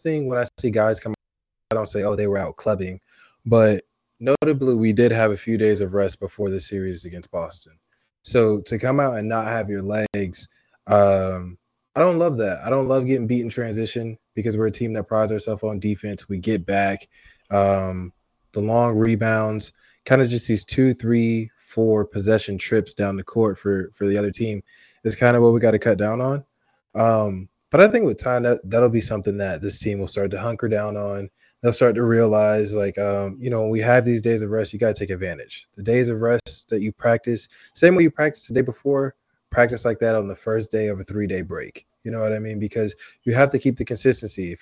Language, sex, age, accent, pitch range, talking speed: English, male, 20-39, American, 100-120 Hz, 225 wpm